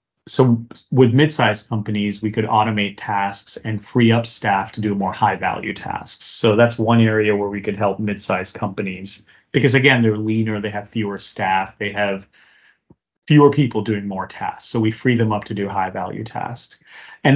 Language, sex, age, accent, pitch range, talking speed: English, male, 30-49, American, 100-115 Hz, 180 wpm